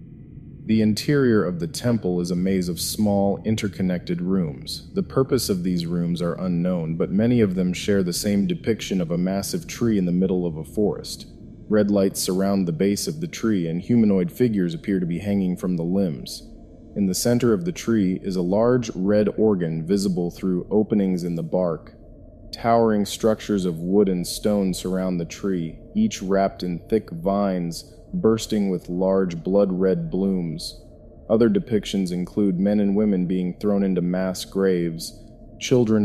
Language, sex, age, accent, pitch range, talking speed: English, male, 30-49, American, 90-105 Hz, 170 wpm